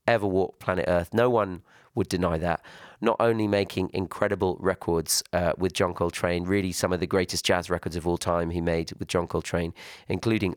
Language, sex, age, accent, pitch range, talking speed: French, male, 30-49, British, 90-110 Hz, 195 wpm